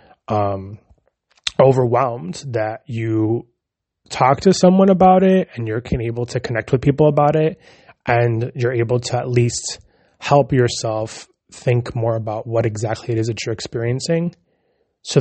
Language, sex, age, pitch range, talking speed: English, male, 20-39, 110-130 Hz, 145 wpm